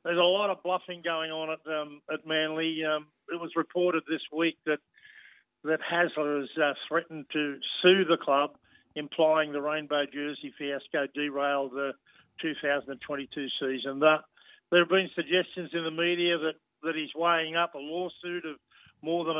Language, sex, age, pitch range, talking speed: English, male, 50-69, 155-180 Hz, 165 wpm